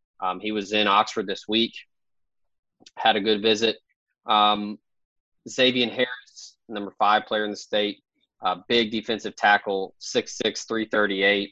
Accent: American